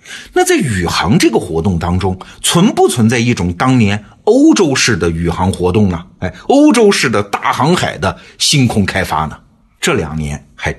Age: 50-69